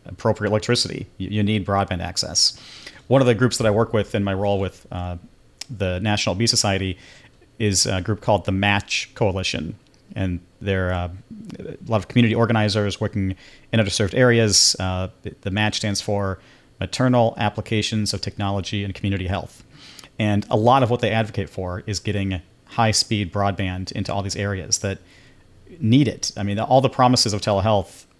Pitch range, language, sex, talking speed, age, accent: 100-130 Hz, English, male, 170 wpm, 40-59, American